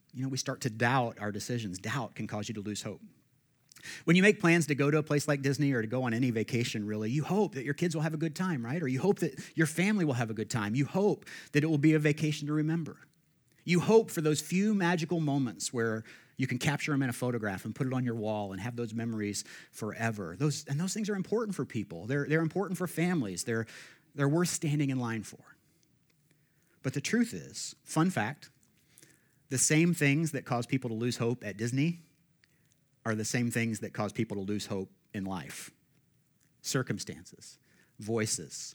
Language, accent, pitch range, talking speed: English, American, 115-160 Hz, 220 wpm